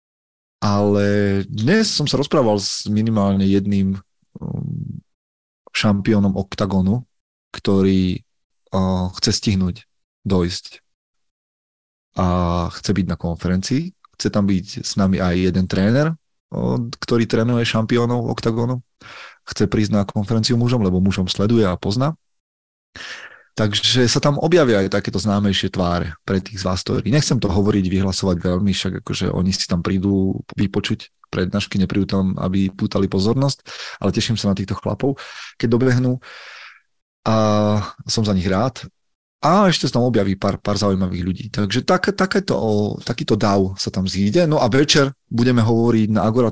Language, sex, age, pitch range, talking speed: Slovak, male, 30-49, 95-120 Hz, 140 wpm